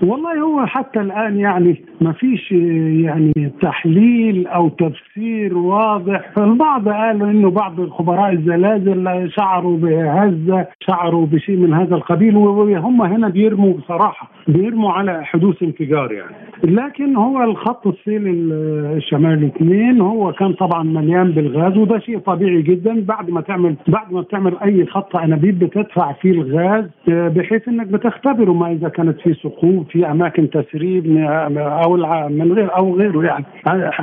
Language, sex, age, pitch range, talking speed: Arabic, male, 50-69, 160-200 Hz, 140 wpm